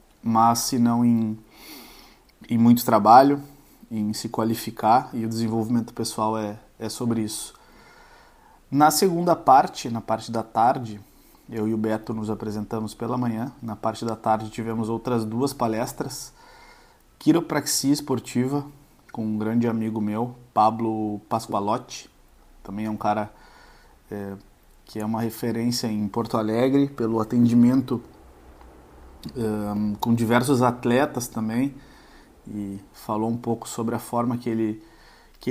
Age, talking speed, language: 20-39, 135 wpm, Portuguese